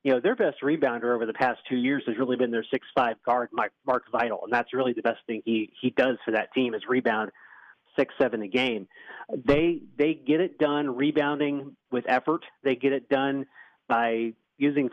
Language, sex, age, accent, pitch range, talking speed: English, male, 30-49, American, 125-150 Hz, 205 wpm